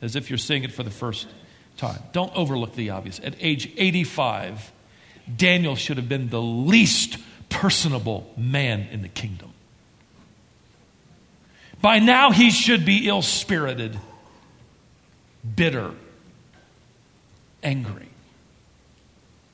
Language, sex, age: English, male, 50-69